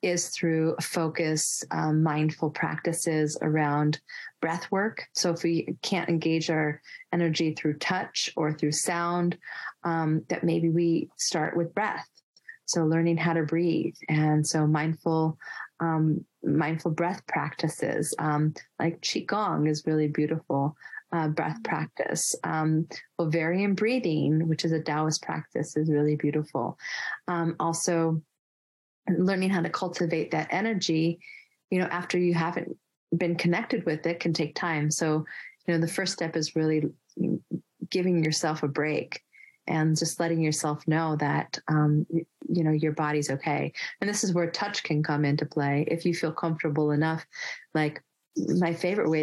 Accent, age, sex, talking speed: American, 30-49, female, 145 wpm